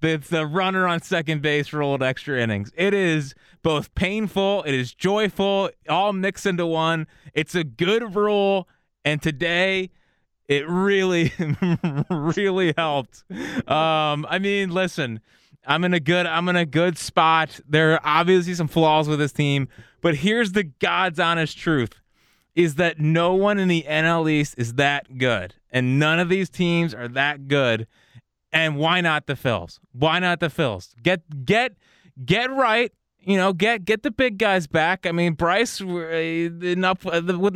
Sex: male